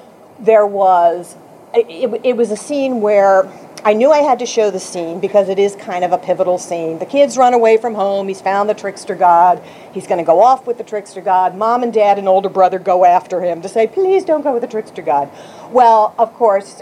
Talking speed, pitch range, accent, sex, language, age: 230 wpm, 185-255 Hz, American, female, English, 50-69